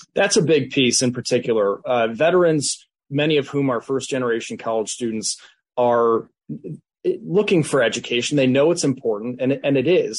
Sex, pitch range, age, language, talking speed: male, 120-140 Hz, 30-49, English, 165 wpm